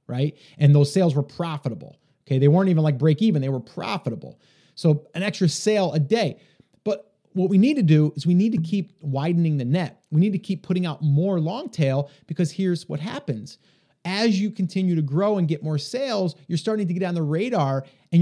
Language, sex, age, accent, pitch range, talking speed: English, male, 30-49, American, 140-185 Hz, 215 wpm